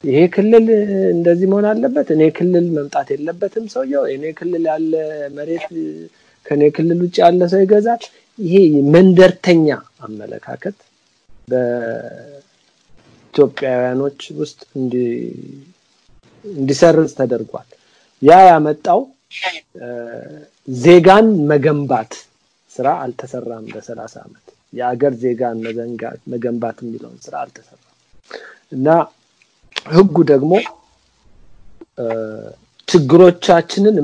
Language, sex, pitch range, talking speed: Amharic, male, 115-175 Hz, 50 wpm